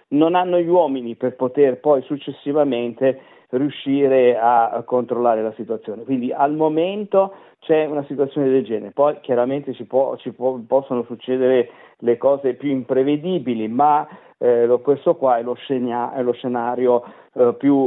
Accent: native